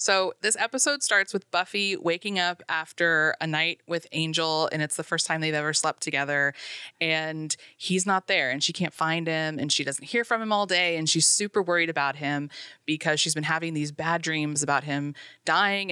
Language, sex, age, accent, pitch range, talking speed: English, female, 20-39, American, 160-200 Hz, 205 wpm